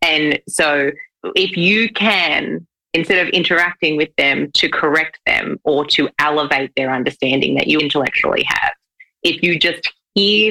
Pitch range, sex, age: 145-185 Hz, female, 30-49